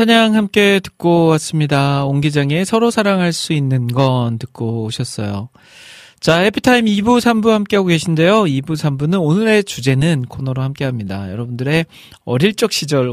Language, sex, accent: Korean, male, native